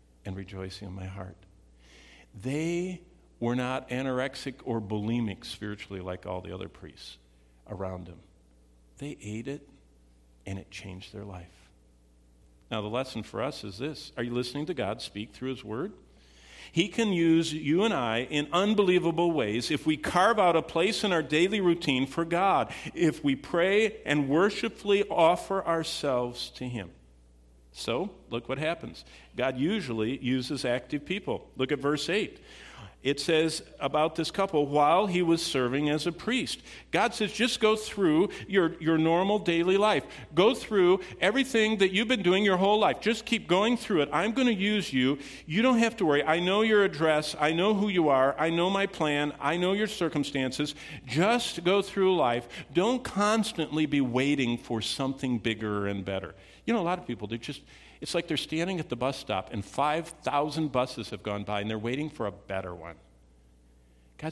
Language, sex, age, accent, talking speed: English, male, 50-69, American, 180 wpm